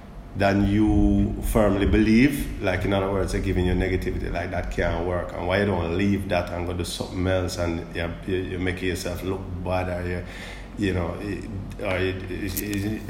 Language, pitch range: Bulgarian, 100-130 Hz